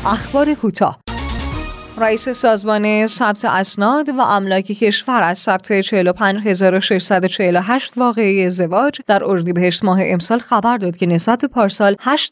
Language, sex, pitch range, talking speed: Persian, female, 180-230 Hz, 120 wpm